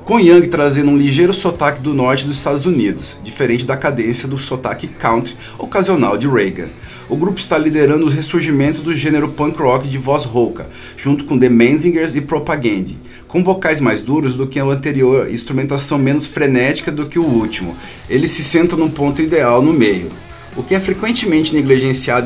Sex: male